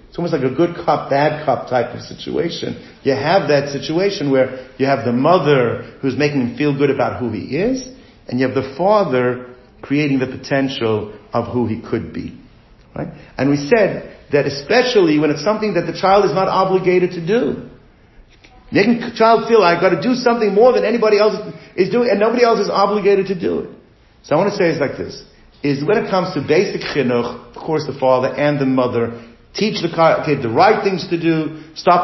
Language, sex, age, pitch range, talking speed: English, male, 50-69, 130-180 Hz, 210 wpm